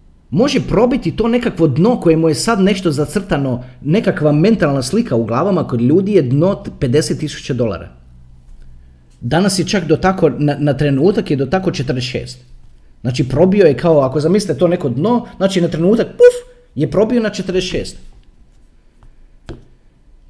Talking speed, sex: 150 wpm, male